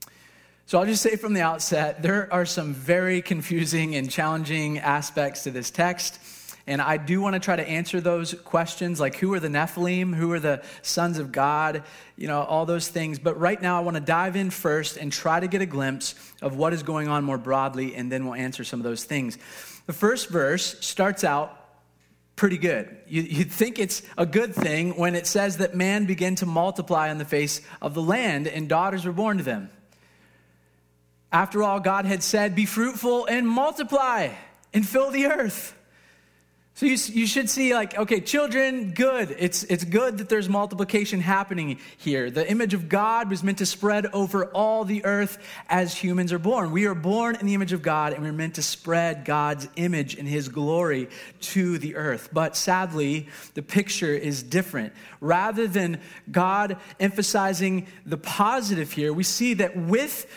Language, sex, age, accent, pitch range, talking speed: English, male, 30-49, American, 155-200 Hz, 190 wpm